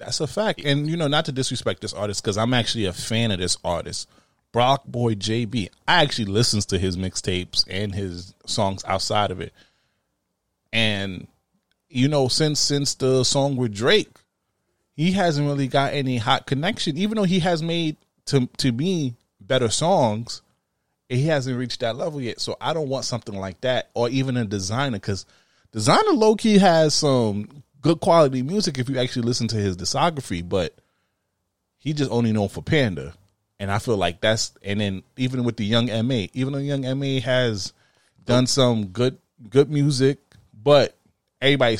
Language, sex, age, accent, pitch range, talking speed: English, male, 20-39, American, 105-145 Hz, 180 wpm